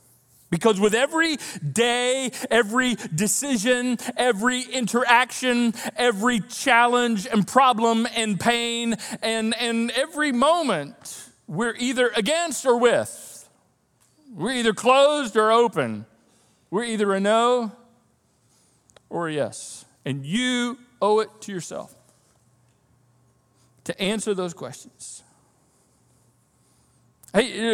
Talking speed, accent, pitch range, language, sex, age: 100 wpm, American, 145-230 Hz, English, male, 40-59